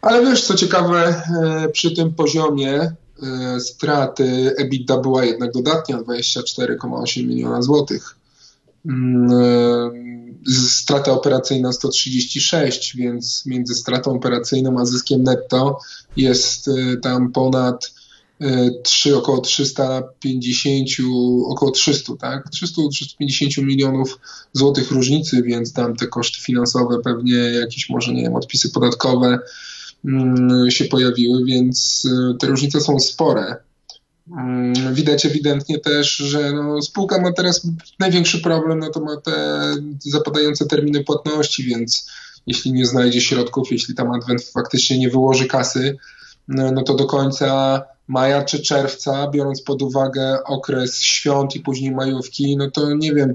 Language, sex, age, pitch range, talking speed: Polish, male, 20-39, 125-145 Hz, 120 wpm